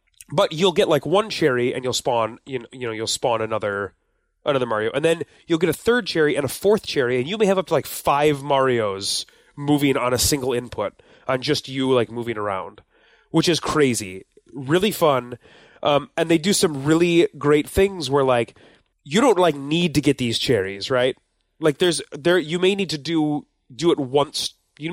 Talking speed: 205 wpm